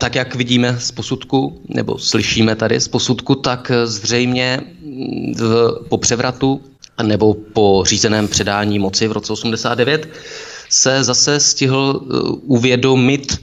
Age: 30-49